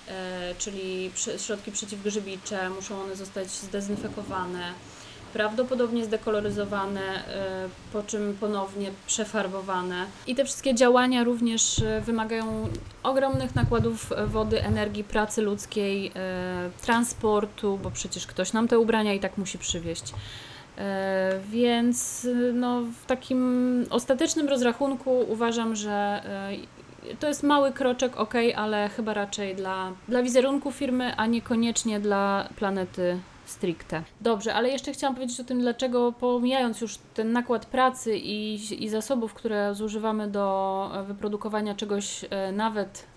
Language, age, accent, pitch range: Polish, 20-39, native, 195-235 Hz